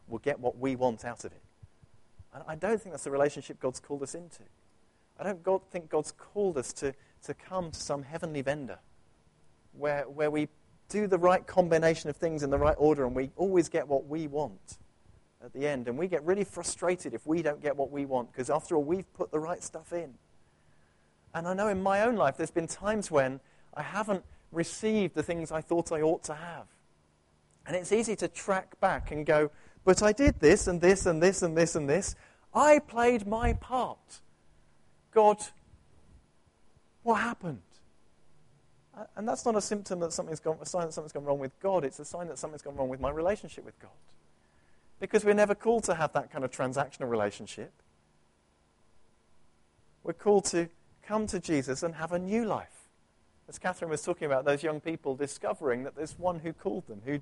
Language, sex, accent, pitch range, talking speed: English, male, British, 130-180 Hz, 200 wpm